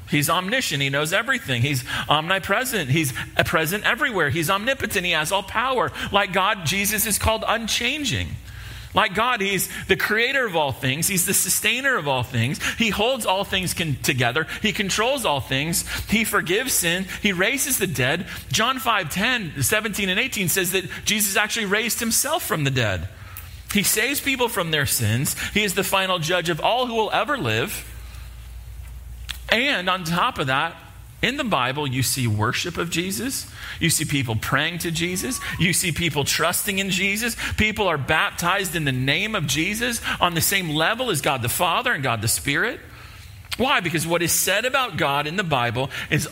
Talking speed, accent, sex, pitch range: 180 wpm, American, male, 135-205 Hz